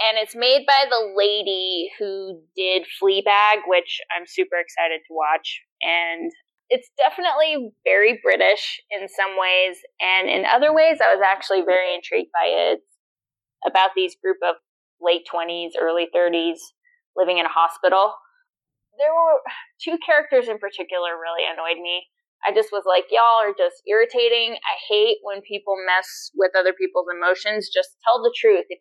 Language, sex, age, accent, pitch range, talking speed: English, female, 20-39, American, 185-310 Hz, 160 wpm